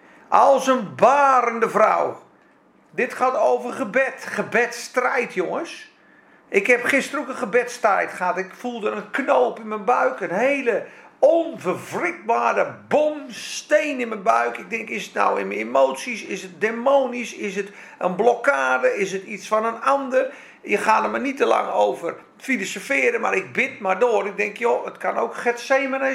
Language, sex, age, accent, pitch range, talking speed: Dutch, male, 50-69, Dutch, 215-270 Hz, 170 wpm